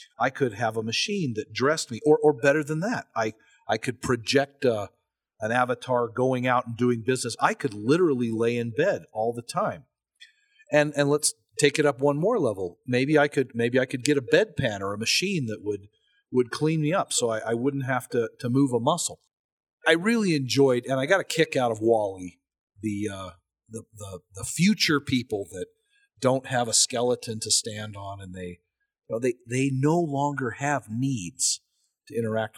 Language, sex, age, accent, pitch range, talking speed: English, male, 40-59, American, 110-145 Hz, 200 wpm